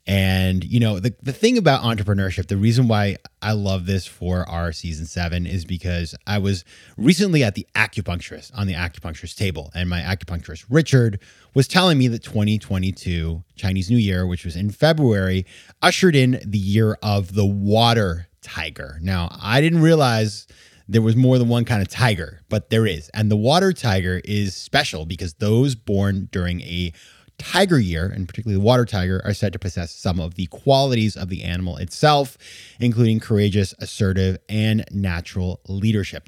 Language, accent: English, American